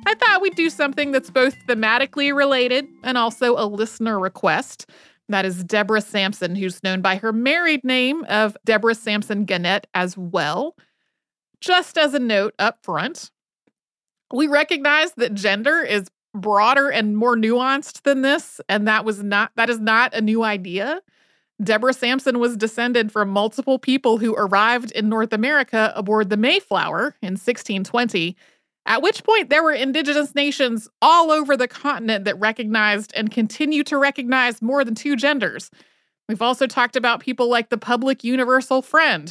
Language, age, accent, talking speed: English, 30-49, American, 160 wpm